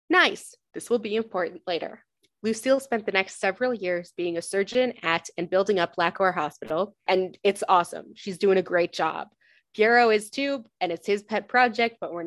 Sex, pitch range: female, 180-230 Hz